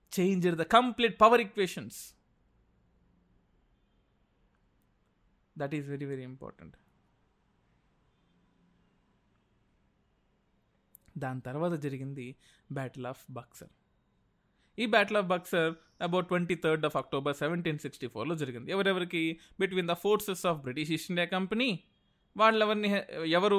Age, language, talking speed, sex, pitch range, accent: 20-39, Telugu, 95 wpm, male, 145-190 Hz, native